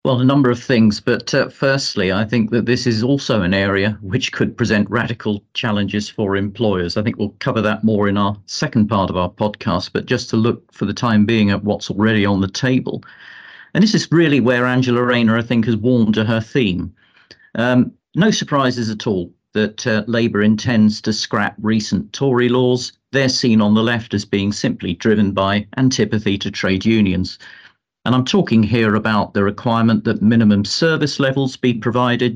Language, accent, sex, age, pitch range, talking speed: English, British, male, 40-59, 105-130 Hz, 195 wpm